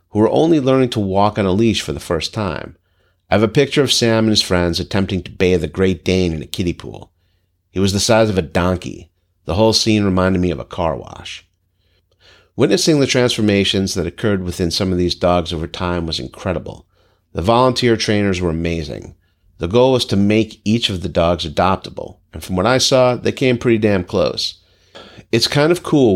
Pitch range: 90-105 Hz